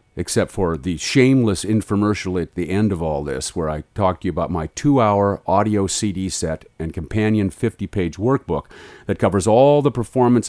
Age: 50-69